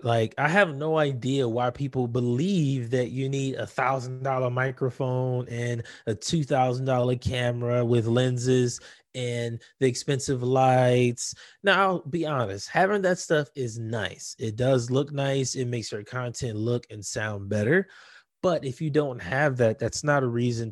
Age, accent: 20-39, American